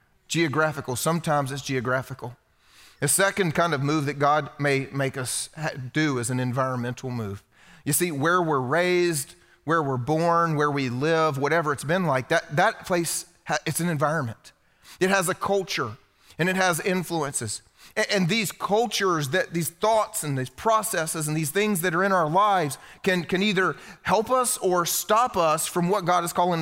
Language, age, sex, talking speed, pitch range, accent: English, 30-49, male, 175 wpm, 150-195 Hz, American